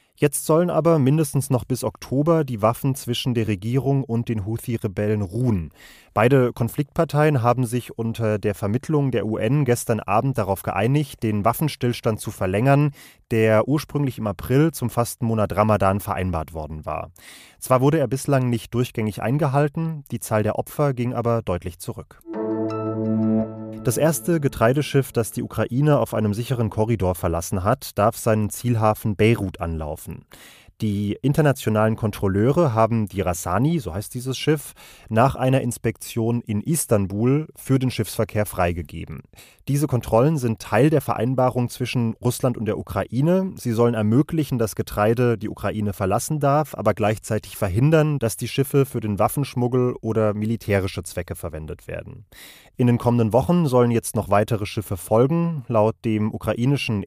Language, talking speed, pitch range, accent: German, 150 wpm, 105-135 Hz, German